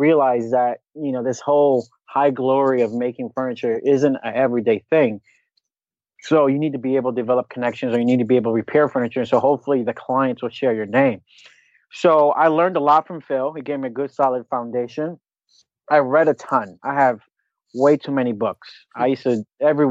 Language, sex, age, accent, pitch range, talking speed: English, male, 30-49, American, 125-150 Hz, 210 wpm